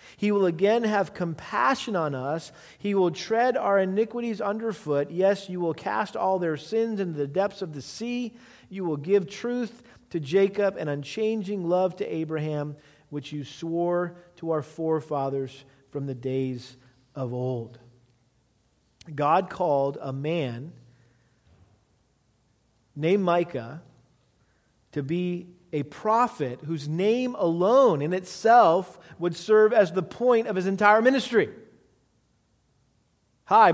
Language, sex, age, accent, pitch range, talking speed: English, male, 40-59, American, 150-210 Hz, 130 wpm